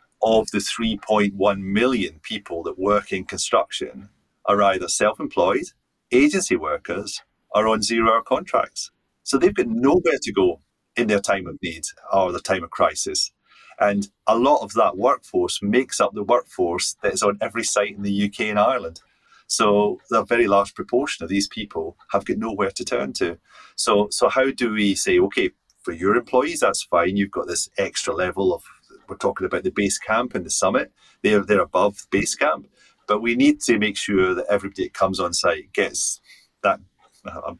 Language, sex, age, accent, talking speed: English, male, 30-49, British, 185 wpm